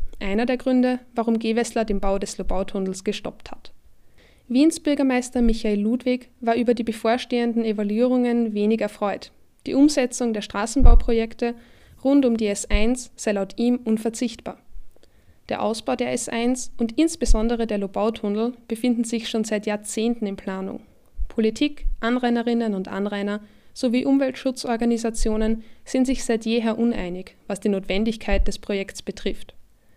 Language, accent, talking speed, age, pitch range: German, German, 130 wpm, 20-39, 210-245 Hz